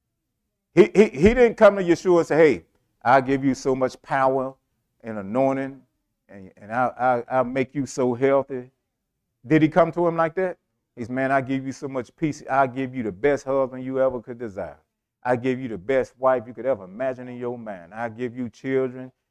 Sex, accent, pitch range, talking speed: male, American, 130-180 Hz, 220 wpm